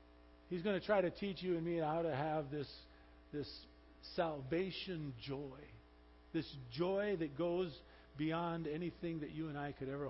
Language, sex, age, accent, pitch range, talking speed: English, male, 50-69, American, 130-175 Hz, 165 wpm